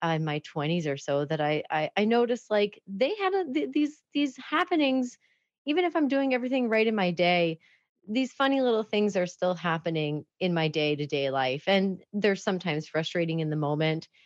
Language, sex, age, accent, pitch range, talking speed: English, female, 30-49, American, 165-225 Hz, 200 wpm